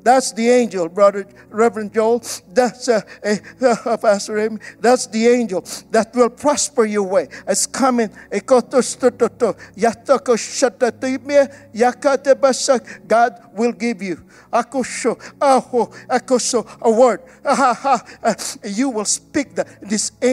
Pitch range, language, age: 225-275 Hz, English, 50-69